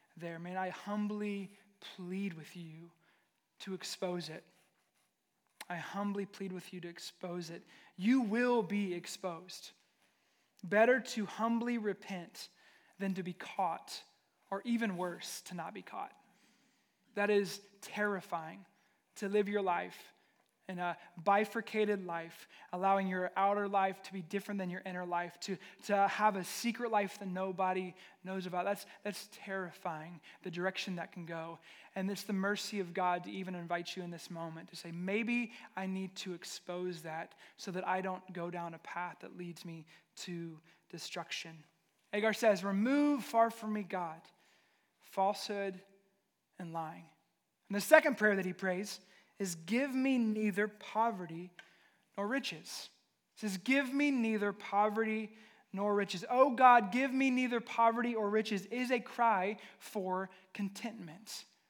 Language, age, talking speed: English, 20-39, 150 wpm